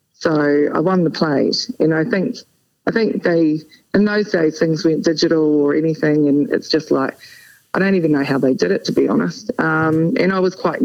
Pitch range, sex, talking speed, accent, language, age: 145-165 Hz, female, 215 wpm, Australian, English, 40-59